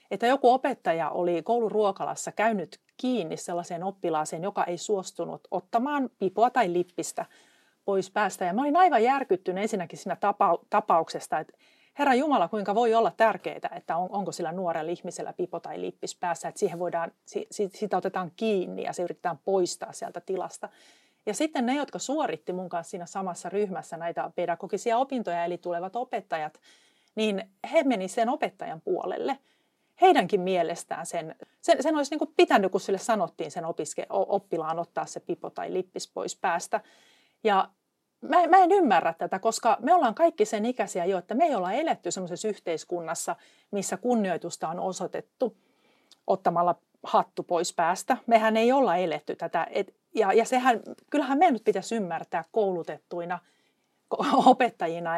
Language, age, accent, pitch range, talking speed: Finnish, 40-59, native, 175-250 Hz, 150 wpm